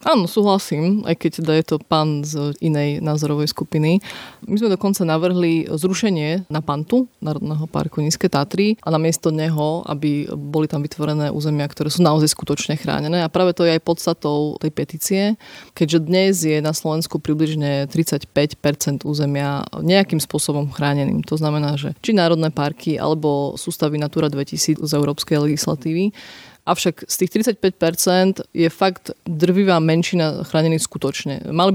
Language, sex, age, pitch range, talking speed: Slovak, female, 20-39, 150-175 Hz, 150 wpm